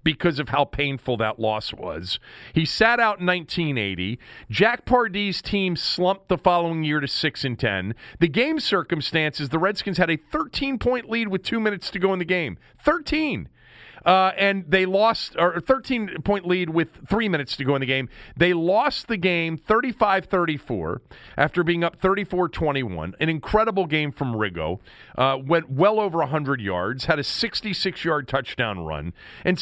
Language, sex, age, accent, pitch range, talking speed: English, male, 40-59, American, 135-190 Hz, 165 wpm